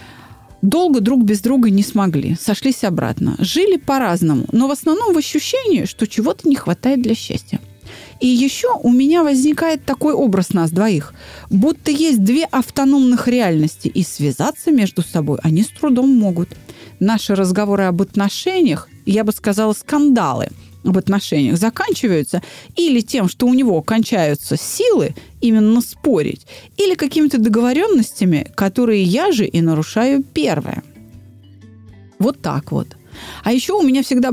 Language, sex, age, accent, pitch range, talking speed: Russian, female, 30-49, native, 175-265 Hz, 140 wpm